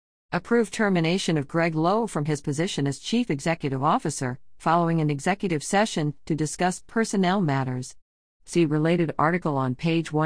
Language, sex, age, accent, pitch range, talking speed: English, female, 50-69, American, 150-195 Hz, 145 wpm